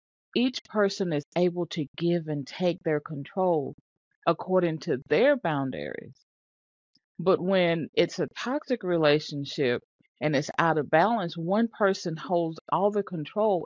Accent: American